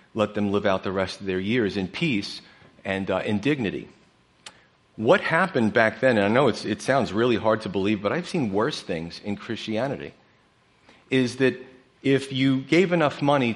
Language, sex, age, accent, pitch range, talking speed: English, male, 40-59, American, 100-125 Hz, 185 wpm